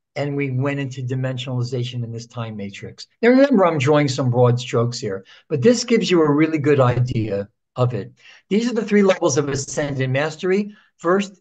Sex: male